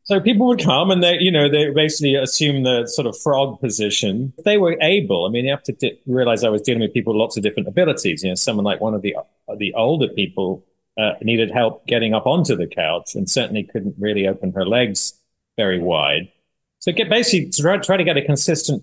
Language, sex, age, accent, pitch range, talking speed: English, male, 40-59, British, 105-145 Hz, 235 wpm